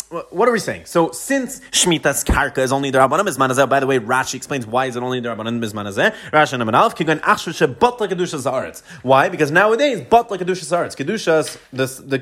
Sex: male